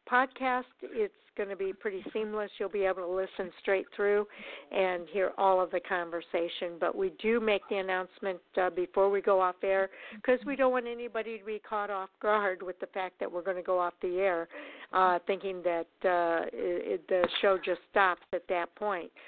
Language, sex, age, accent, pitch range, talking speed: English, female, 60-79, American, 180-225 Hz, 200 wpm